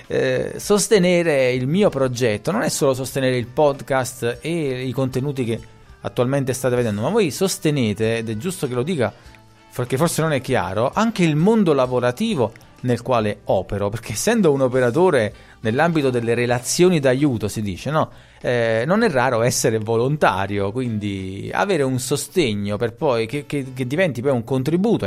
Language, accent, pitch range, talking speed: Italian, native, 110-155 Hz, 155 wpm